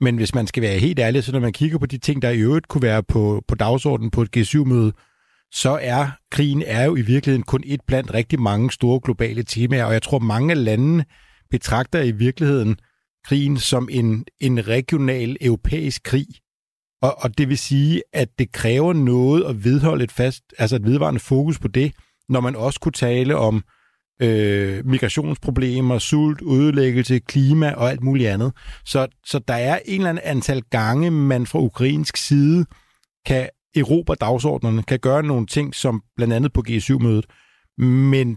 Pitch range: 120-145 Hz